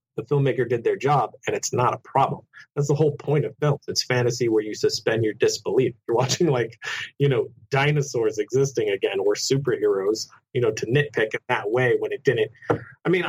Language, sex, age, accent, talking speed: English, male, 30-49, American, 205 wpm